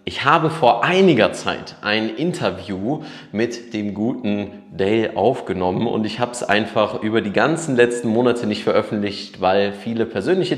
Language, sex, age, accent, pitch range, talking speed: German, male, 30-49, German, 100-140 Hz, 155 wpm